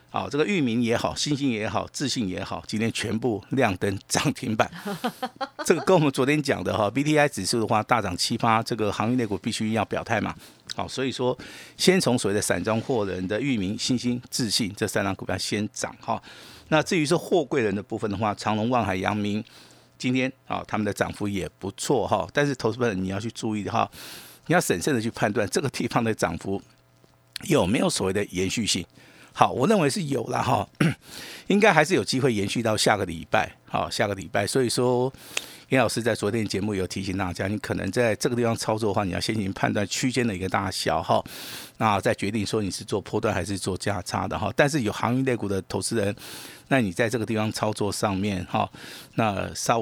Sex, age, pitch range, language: male, 50-69, 95-120 Hz, Chinese